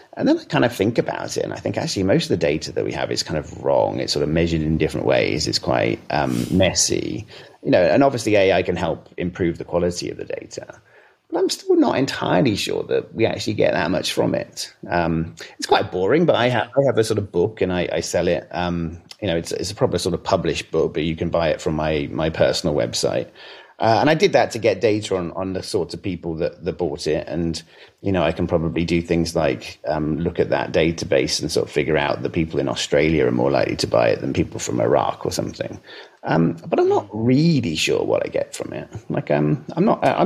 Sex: male